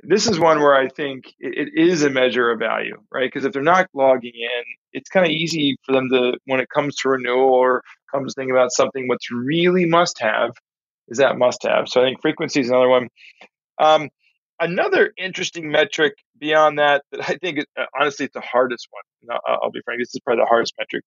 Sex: male